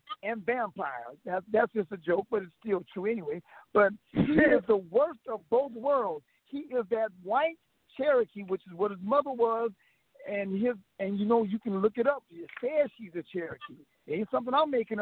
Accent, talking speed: American, 200 wpm